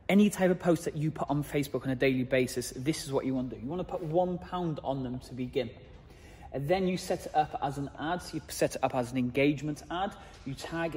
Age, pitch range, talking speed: 30-49, 135-160 Hz, 275 wpm